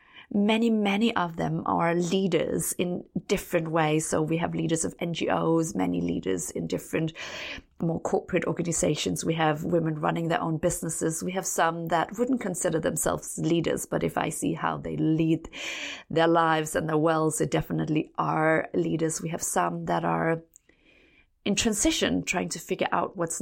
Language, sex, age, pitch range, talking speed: English, female, 30-49, 160-190 Hz, 165 wpm